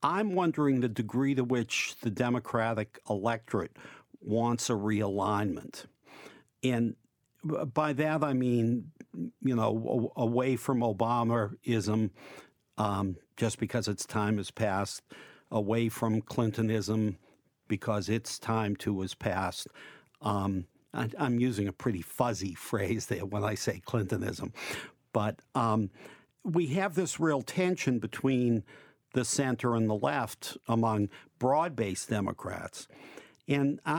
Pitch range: 110-140 Hz